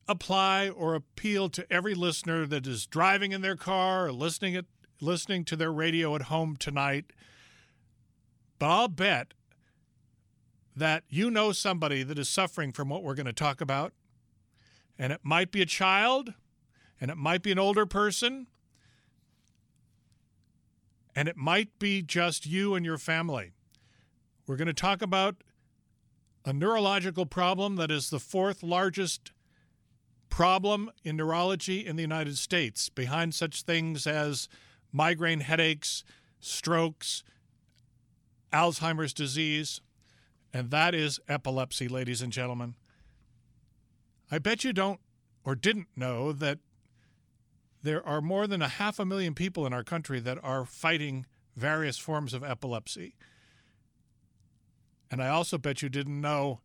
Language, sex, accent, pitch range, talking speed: English, male, American, 125-175 Hz, 135 wpm